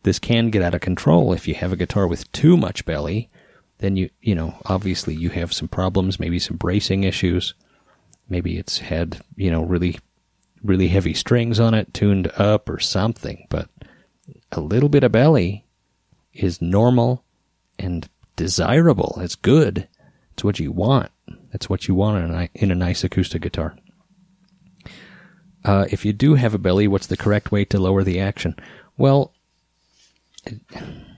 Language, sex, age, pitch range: English, male, 30-49, 90-115 Hz